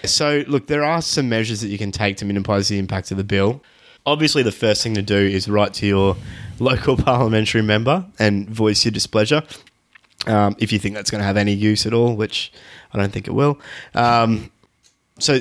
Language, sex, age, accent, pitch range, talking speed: English, male, 20-39, Australian, 105-125 Hz, 210 wpm